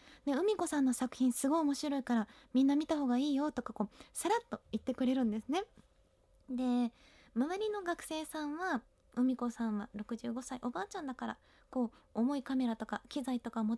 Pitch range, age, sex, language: 250-345 Hz, 20-39, female, Japanese